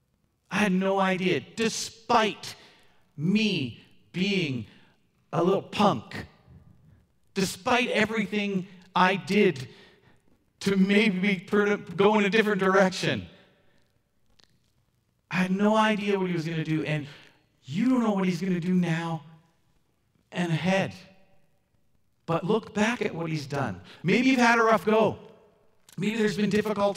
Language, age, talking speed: English, 40-59, 135 wpm